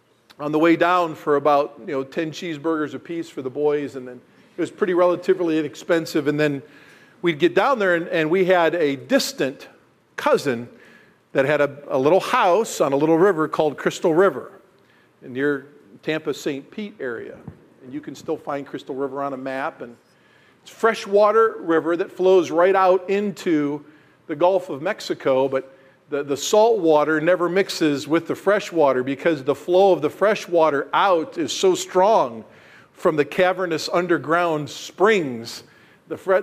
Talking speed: 170 wpm